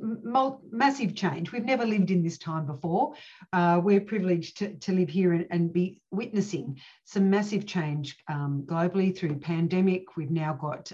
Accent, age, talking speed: Australian, 50-69, 165 wpm